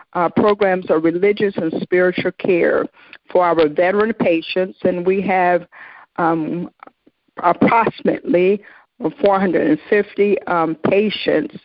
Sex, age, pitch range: female, 50-69, 170-210 Hz